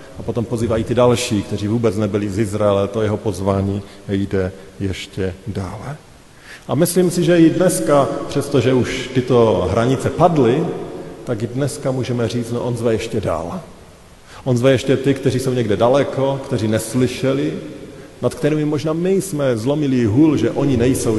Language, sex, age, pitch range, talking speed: Slovak, male, 40-59, 105-140 Hz, 160 wpm